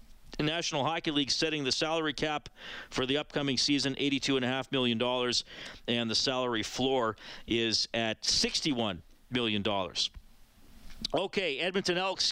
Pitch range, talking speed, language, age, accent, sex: 125-170 Hz, 115 wpm, English, 50-69, American, male